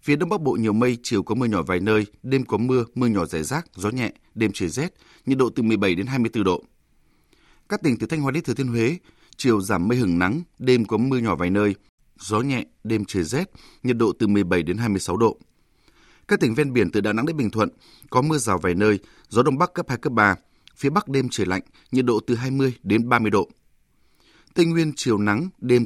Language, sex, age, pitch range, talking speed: Vietnamese, male, 20-39, 100-130 Hz, 235 wpm